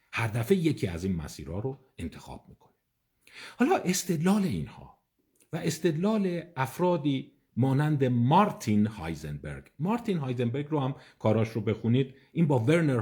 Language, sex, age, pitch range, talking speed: Persian, male, 50-69, 100-160 Hz, 130 wpm